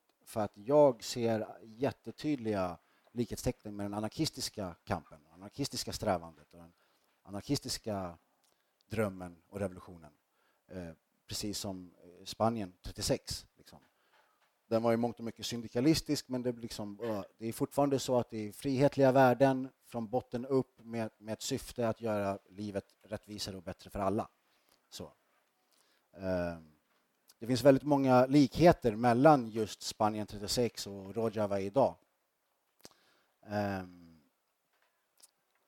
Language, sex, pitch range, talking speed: Swedish, male, 105-140 Hz, 125 wpm